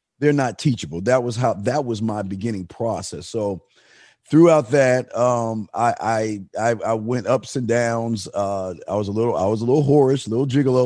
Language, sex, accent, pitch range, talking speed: English, male, American, 105-125 Hz, 195 wpm